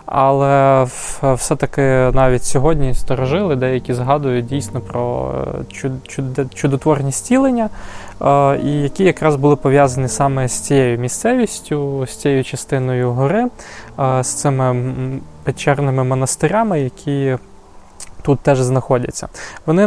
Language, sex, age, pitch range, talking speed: Ukrainian, male, 20-39, 130-150 Hz, 100 wpm